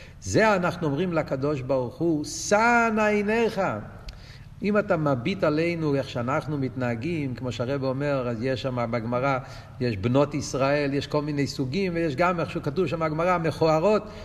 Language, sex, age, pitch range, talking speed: Hebrew, male, 50-69, 140-200 Hz, 155 wpm